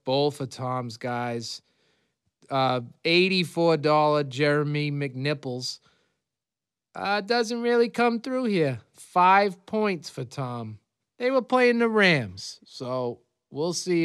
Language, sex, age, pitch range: English, male, 30-49, 125-180 Hz